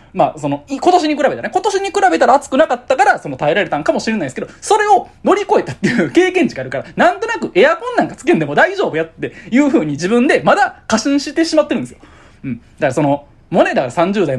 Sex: male